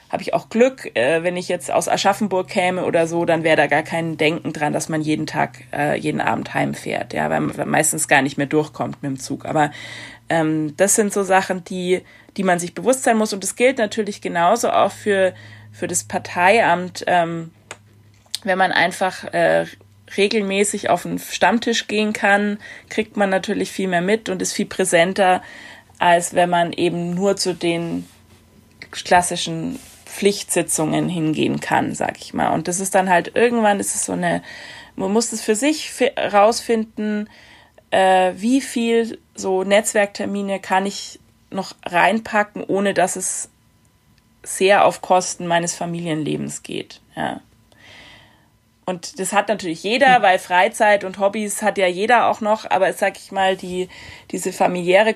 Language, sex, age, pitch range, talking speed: German, female, 30-49, 165-205 Hz, 165 wpm